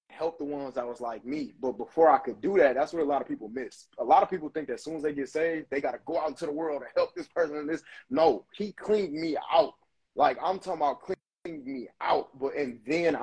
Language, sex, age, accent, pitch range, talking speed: English, male, 20-39, American, 125-160 Hz, 275 wpm